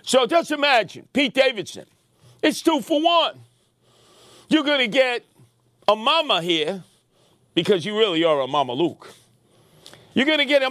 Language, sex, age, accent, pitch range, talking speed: English, male, 50-69, American, 165-255 Hz, 155 wpm